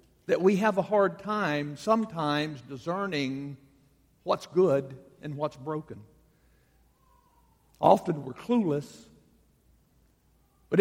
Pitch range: 130-185 Hz